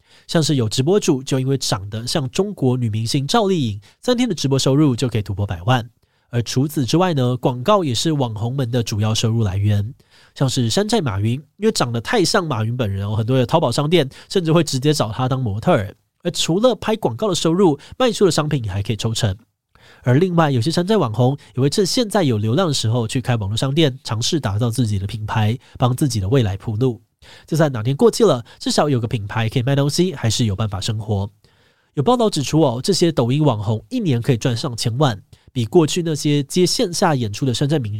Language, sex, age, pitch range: Chinese, male, 20-39, 115-160 Hz